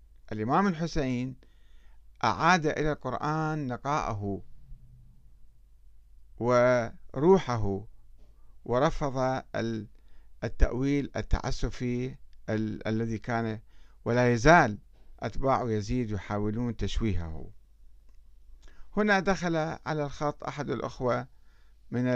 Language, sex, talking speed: Arabic, male, 70 wpm